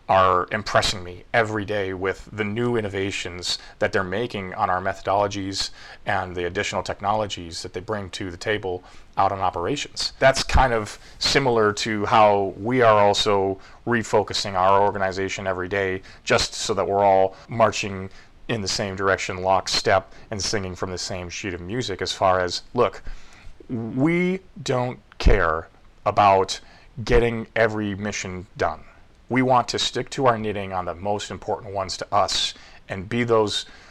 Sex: male